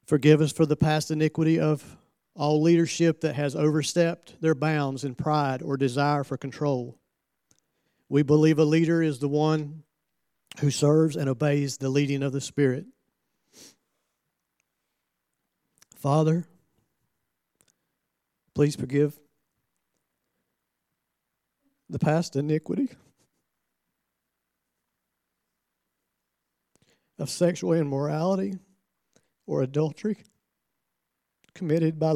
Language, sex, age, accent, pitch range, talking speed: English, male, 50-69, American, 140-160 Hz, 90 wpm